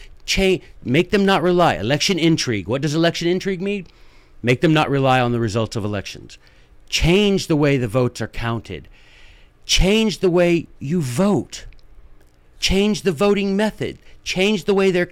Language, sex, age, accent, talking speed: English, male, 50-69, American, 160 wpm